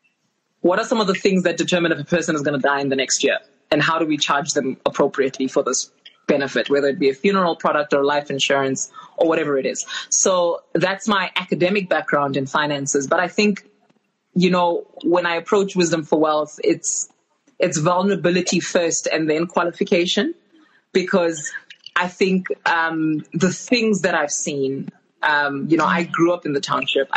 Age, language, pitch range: 20-39, English, 150-185 Hz